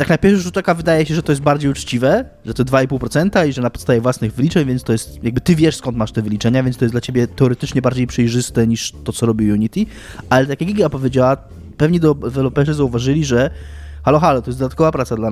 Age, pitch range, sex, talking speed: 20-39, 110-140 Hz, male, 235 wpm